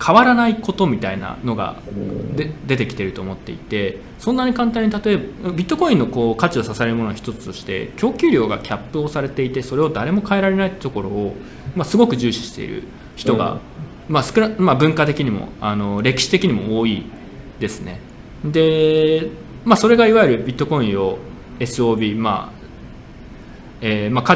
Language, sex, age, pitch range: Japanese, male, 20-39, 110-175 Hz